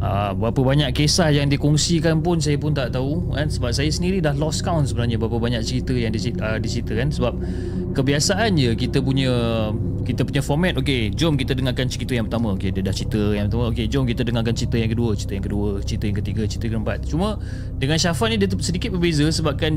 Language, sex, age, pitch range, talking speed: Malay, male, 30-49, 115-145 Hz, 220 wpm